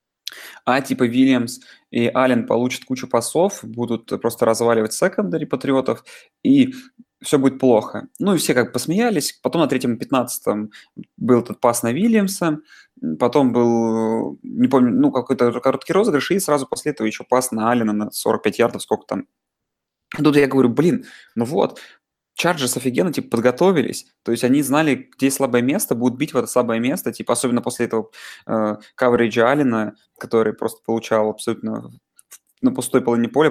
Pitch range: 115-145 Hz